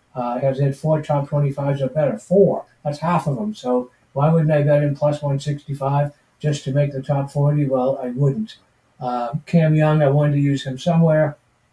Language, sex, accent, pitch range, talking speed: English, male, American, 130-150 Hz, 220 wpm